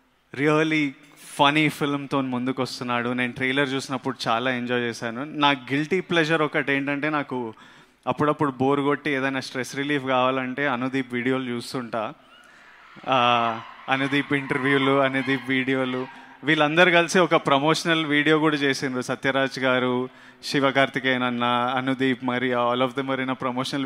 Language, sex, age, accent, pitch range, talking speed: Telugu, male, 30-49, native, 125-145 Hz, 125 wpm